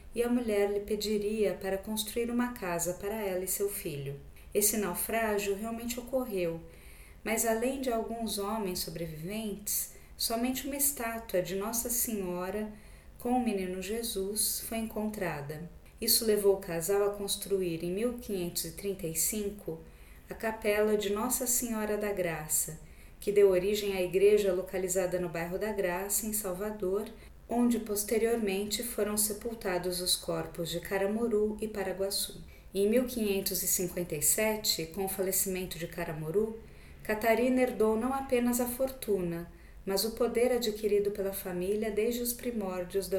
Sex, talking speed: female, 135 wpm